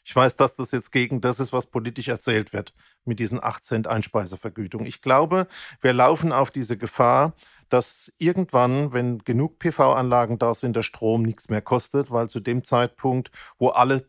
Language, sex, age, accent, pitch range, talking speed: German, male, 40-59, German, 120-145 Hz, 180 wpm